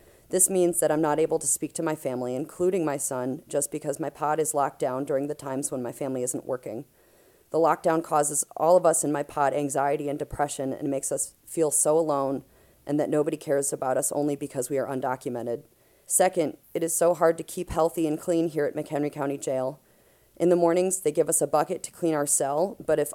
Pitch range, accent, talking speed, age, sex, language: 145-165 Hz, American, 225 wpm, 30-49, female, English